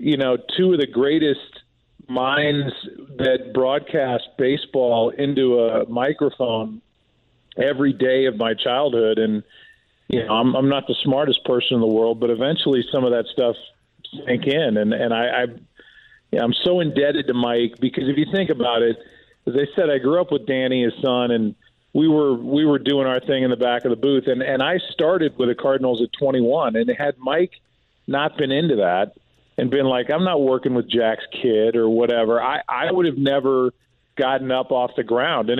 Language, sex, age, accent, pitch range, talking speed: English, male, 40-59, American, 115-140 Hz, 200 wpm